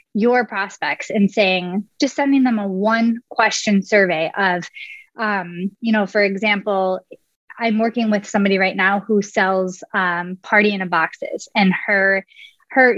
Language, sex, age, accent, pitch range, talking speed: English, female, 20-39, American, 195-230 Hz, 155 wpm